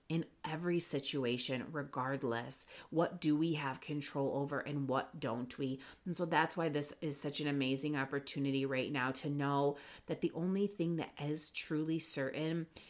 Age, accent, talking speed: 30-49, American, 165 wpm